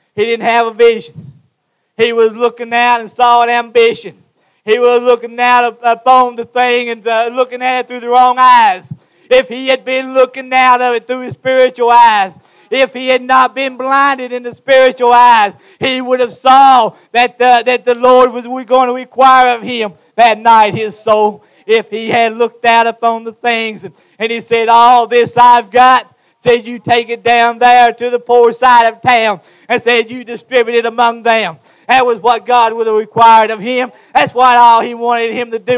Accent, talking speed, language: American, 200 wpm, English